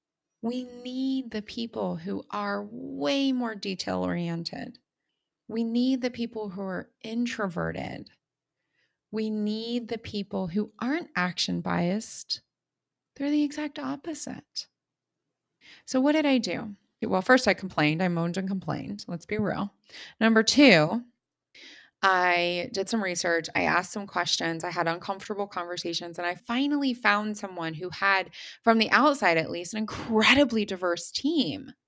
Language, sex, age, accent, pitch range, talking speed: English, female, 20-39, American, 190-255 Hz, 140 wpm